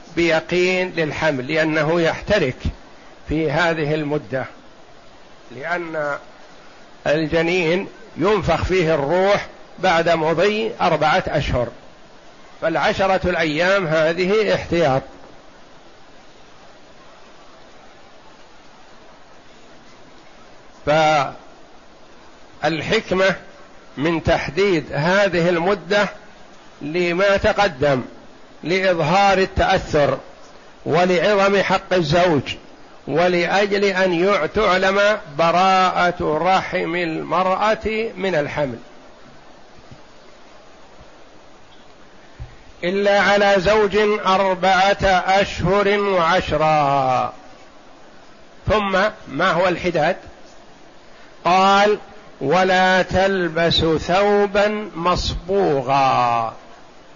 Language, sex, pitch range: Arabic, male, 160-195 Hz